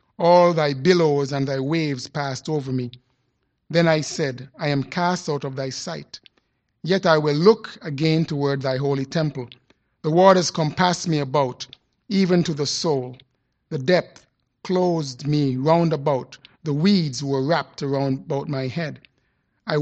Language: English